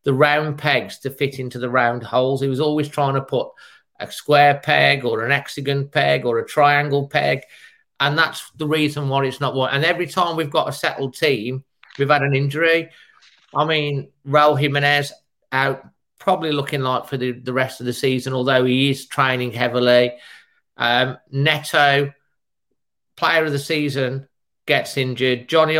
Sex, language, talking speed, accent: male, English, 175 wpm, British